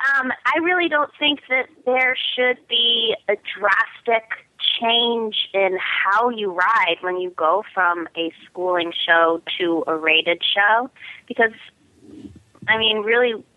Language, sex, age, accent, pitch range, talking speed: English, female, 30-49, American, 175-230 Hz, 135 wpm